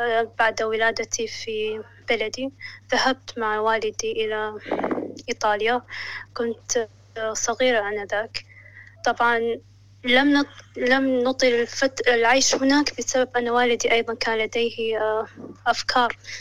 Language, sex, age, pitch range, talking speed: Arabic, female, 20-39, 220-245 Hz, 90 wpm